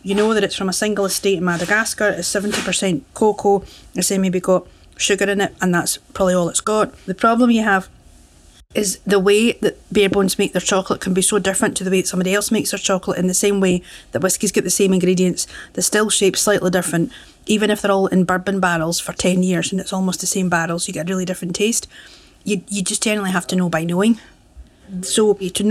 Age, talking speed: 40-59, 235 wpm